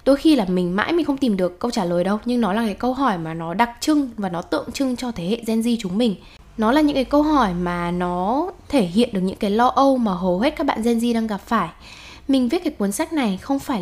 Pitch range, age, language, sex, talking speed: 190-255 Hz, 10-29, Vietnamese, female, 290 wpm